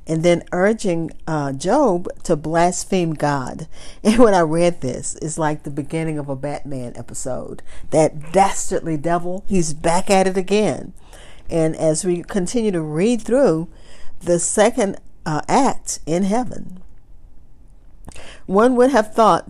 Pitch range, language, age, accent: 150-195 Hz, English, 50-69, American